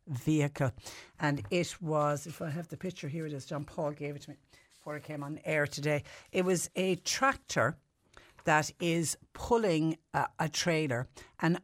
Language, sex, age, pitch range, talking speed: English, female, 60-79, 135-185 Hz, 180 wpm